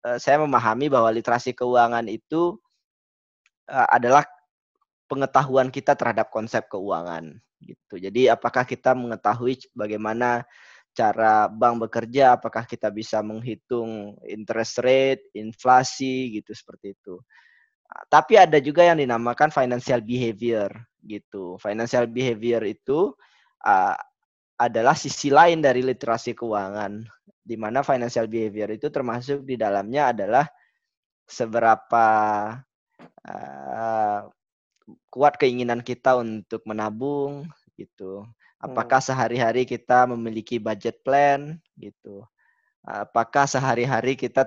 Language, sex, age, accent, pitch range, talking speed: Indonesian, male, 20-39, native, 110-135 Hz, 100 wpm